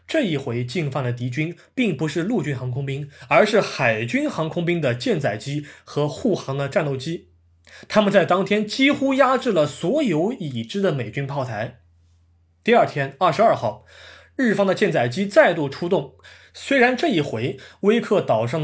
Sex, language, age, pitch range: male, Chinese, 20-39, 130-200 Hz